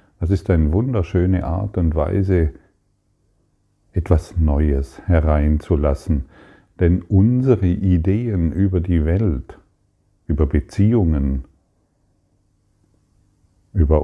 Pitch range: 80-100 Hz